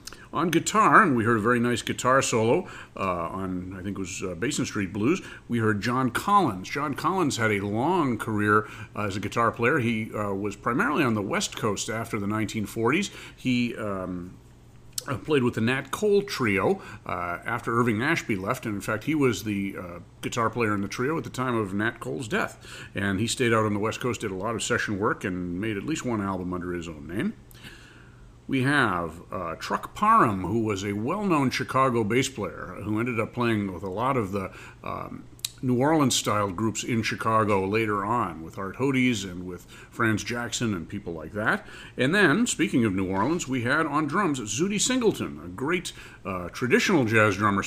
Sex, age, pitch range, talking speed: male, 50-69, 100-125 Hz, 200 wpm